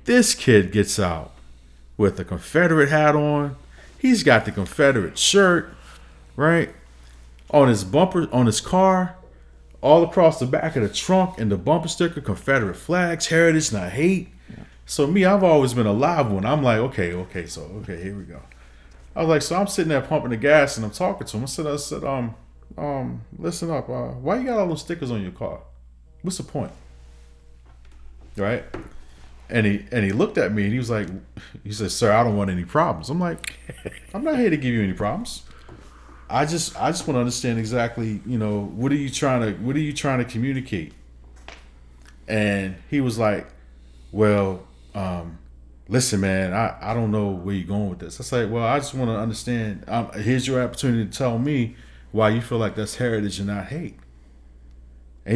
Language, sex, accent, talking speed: English, male, American, 200 wpm